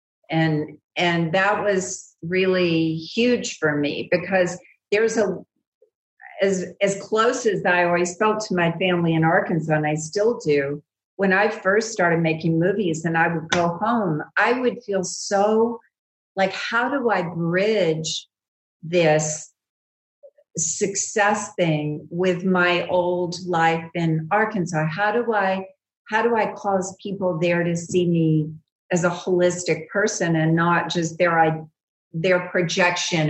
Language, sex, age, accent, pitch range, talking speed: English, female, 50-69, American, 160-195 Hz, 140 wpm